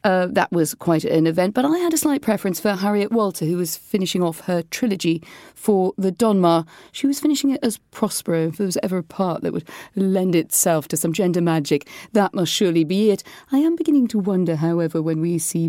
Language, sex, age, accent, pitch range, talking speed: English, female, 40-59, British, 160-215 Hz, 220 wpm